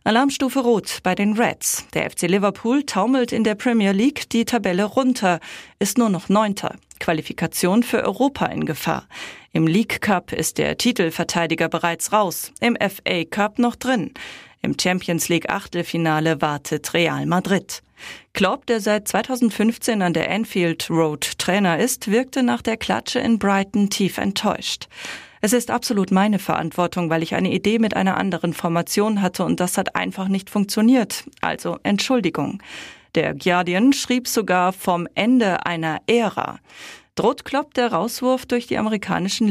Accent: German